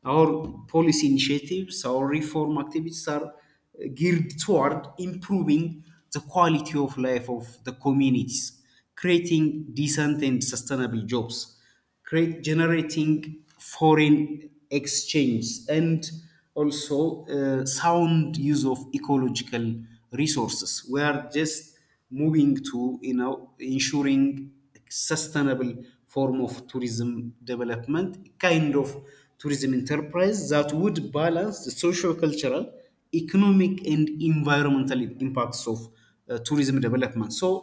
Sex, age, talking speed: male, 30-49, 105 wpm